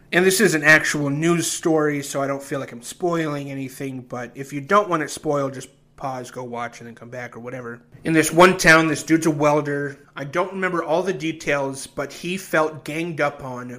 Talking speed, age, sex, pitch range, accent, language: 225 wpm, 30-49, male, 135-160 Hz, American, English